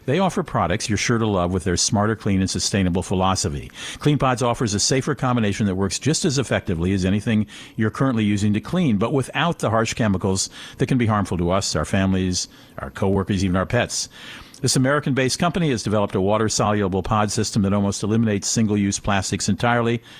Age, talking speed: 50-69, 195 wpm